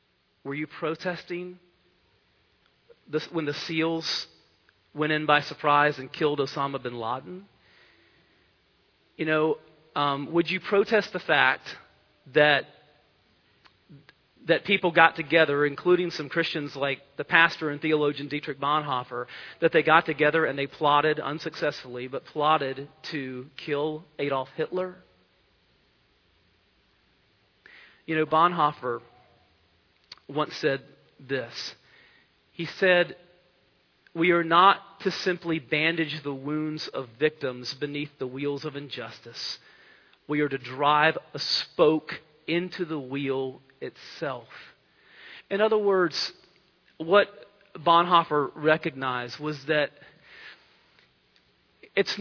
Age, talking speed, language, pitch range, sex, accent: 40-59, 110 wpm, English, 140-170 Hz, male, American